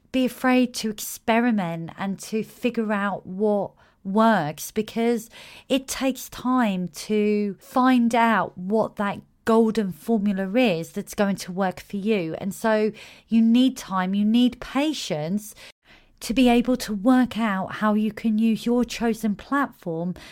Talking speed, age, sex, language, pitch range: 145 wpm, 30-49, female, English, 195-240 Hz